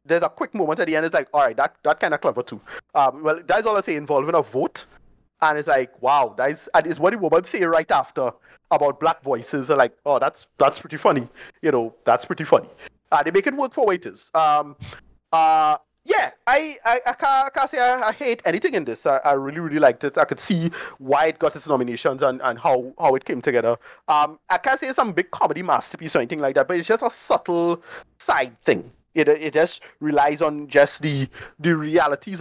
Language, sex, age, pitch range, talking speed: English, male, 30-49, 140-180 Hz, 235 wpm